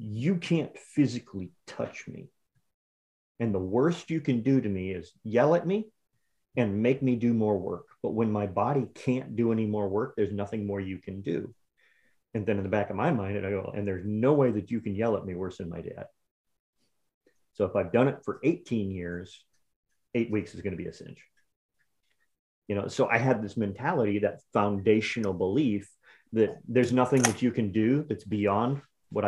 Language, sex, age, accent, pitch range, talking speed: English, male, 30-49, American, 100-130 Hz, 205 wpm